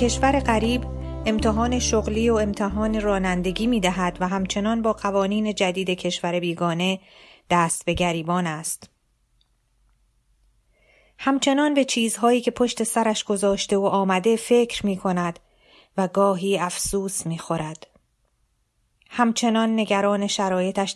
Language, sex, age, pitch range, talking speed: Persian, female, 30-49, 185-220 Hz, 110 wpm